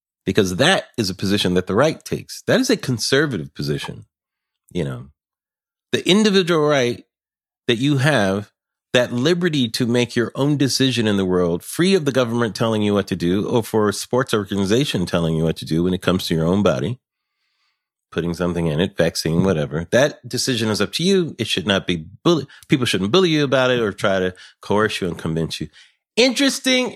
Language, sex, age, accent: English, male, 40-59, American